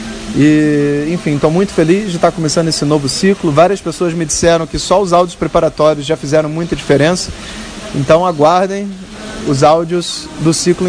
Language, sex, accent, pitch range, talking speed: Portuguese, male, Brazilian, 150-190 Hz, 165 wpm